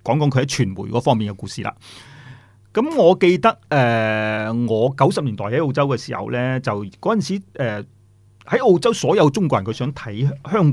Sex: male